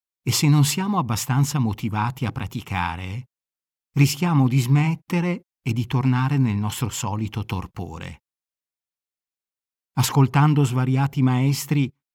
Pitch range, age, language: 105-140 Hz, 50-69, Italian